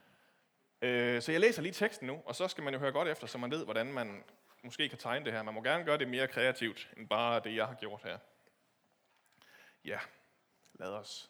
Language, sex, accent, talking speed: Danish, male, native, 220 wpm